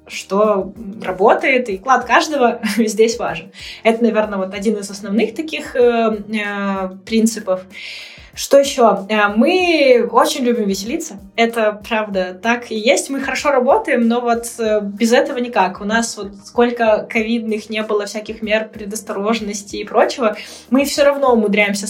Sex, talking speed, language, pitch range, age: female, 145 wpm, Russian, 210-245 Hz, 20-39